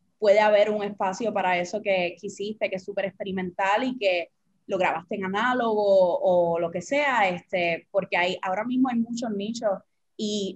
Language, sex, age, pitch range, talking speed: English, female, 20-39, 200-250 Hz, 180 wpm